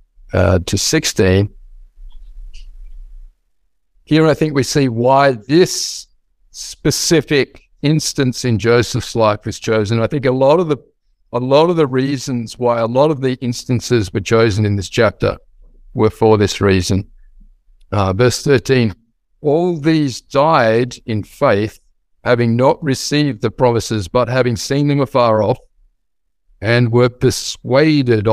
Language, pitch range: English, 105-140 Hz